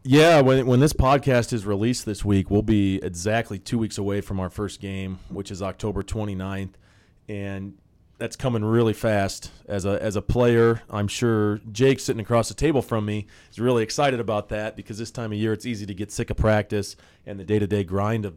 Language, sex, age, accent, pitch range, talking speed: English, male, 30-49, American, 100-115 Hz, 210 wpm